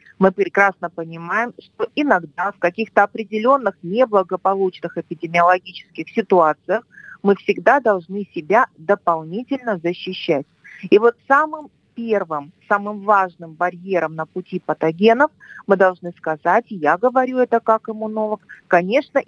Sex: female